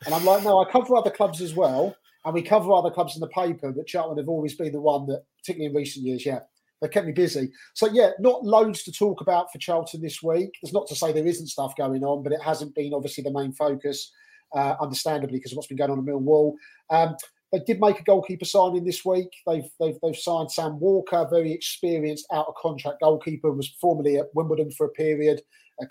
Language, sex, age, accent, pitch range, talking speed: English, male, 30-49, British, 140-170 Hz, 230 wpm